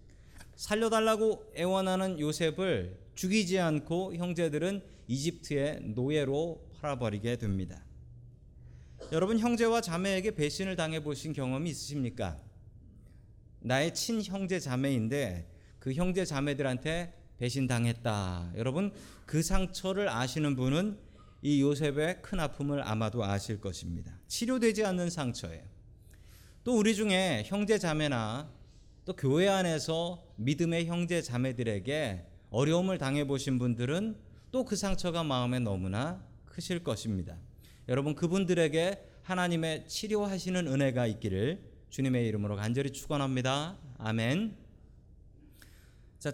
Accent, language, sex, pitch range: native, Korean, male, 115-175 Hz